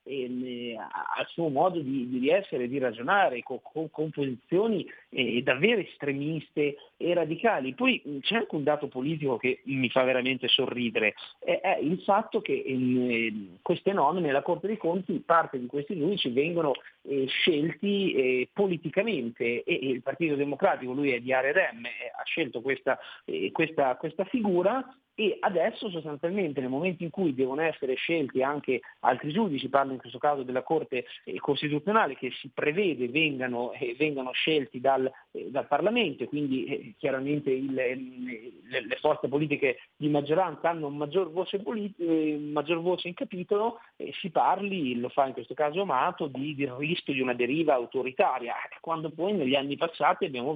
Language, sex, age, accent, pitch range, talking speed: Italian, male, 40-59, native, 130-185 Hz, 160 wpm